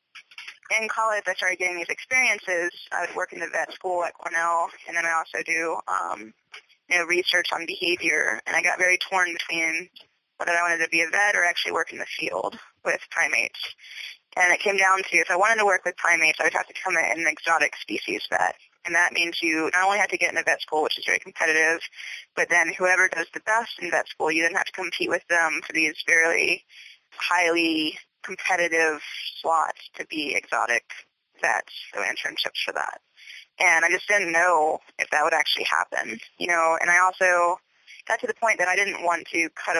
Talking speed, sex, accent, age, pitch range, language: 215 wpm, female, American, 20-39, 165-185 Hz, English